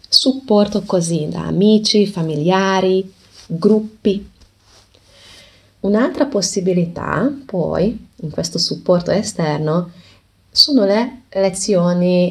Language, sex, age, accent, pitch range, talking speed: Italian, female, 20-39, native, 145-185 Hz, 80 wpm